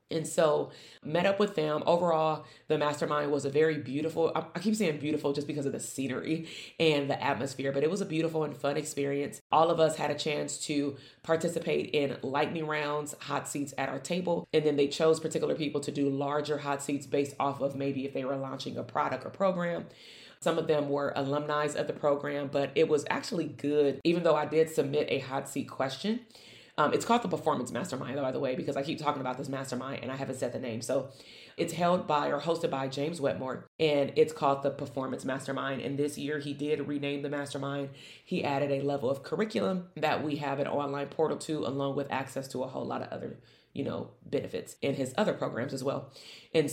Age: 30-49